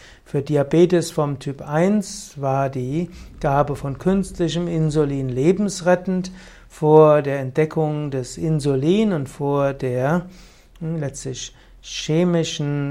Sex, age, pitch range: male, 60-79, 140-170 Hz